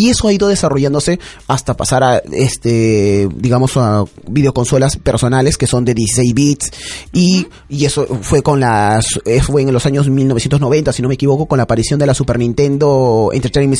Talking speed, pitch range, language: 180 wpm, 130-180 Hz, Spanish